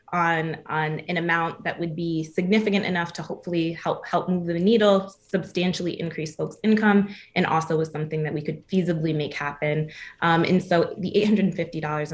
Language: English